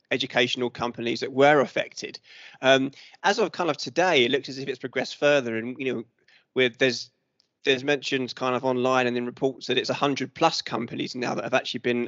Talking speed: 205 wpm